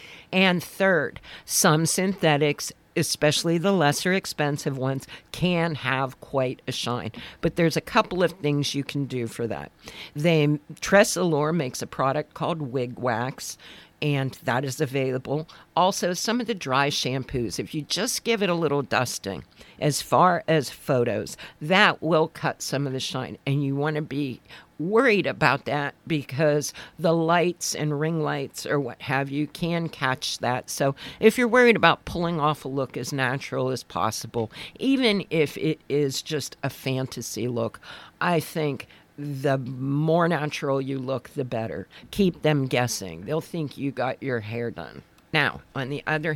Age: 50-69